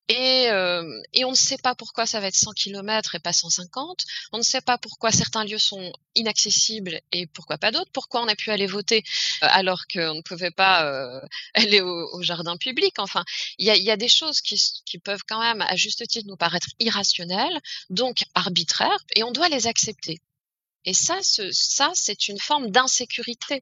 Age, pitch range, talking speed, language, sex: 20-39, 175-240 Hz, 195 wpm, French, female